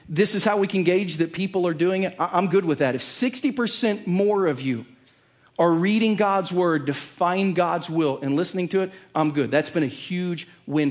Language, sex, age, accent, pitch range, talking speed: English, male, 40-59, American, 140-180 Hz, 215 wpm